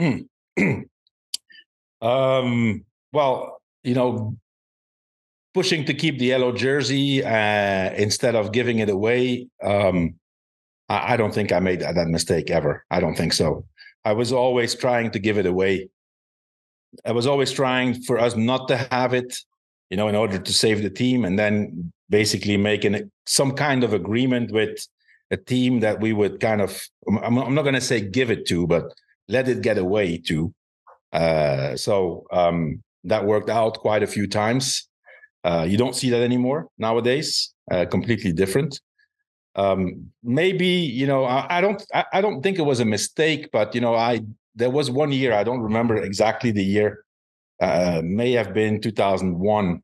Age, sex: 50-69, male